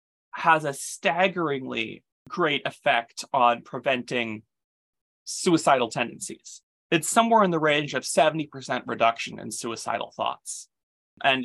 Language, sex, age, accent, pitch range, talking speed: English, male, 20-39, American, 125-170 Hz, 110 wpm